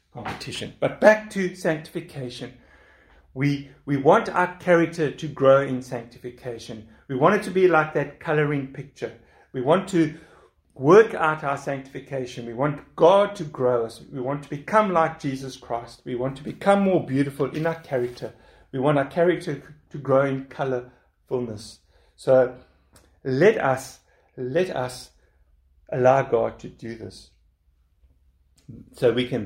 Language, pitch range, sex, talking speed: English, 115-160 Hz, male, 150 wpm